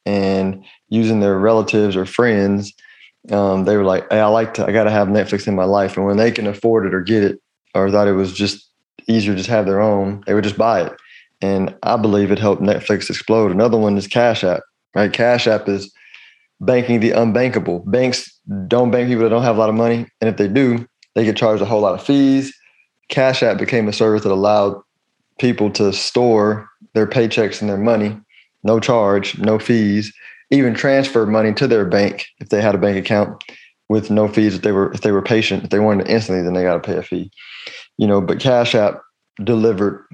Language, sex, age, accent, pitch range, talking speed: English, male, 20-39, American, 100-115 Hz, 220 wpm